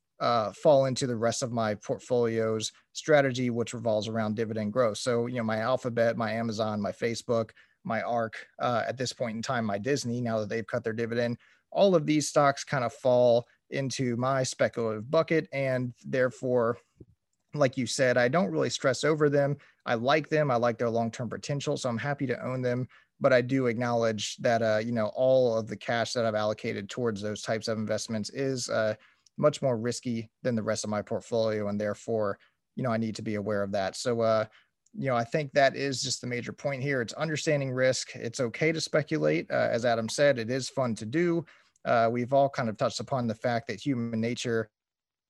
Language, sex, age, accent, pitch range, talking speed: English, male, 30-49, American, 115-130 Hz, 210 wpm